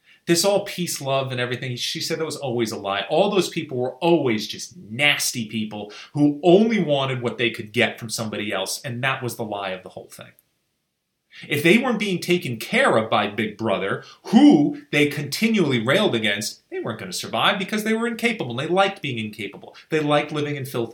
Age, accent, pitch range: 30-49, American, 115-165 Hz